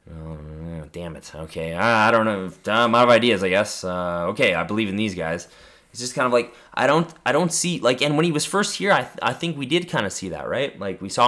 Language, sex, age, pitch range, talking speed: English, male, 20-39, 95-120 Hz, 270 wpm